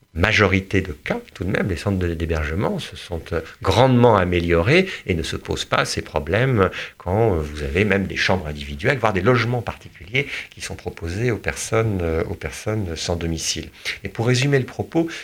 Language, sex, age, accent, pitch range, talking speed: French, male, 50-69, French, 80-105 Hz, 180 wpm